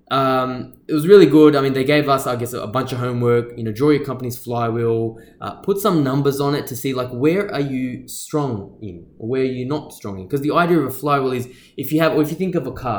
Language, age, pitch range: English, 10-29, 115-145 Hz